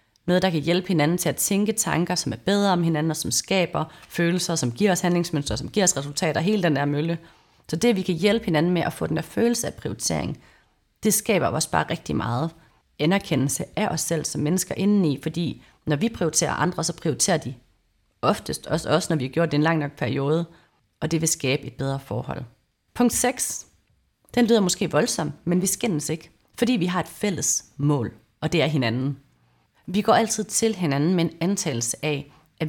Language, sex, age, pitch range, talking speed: Danish, female, 30-49, 145-185 Hz, 210 wpm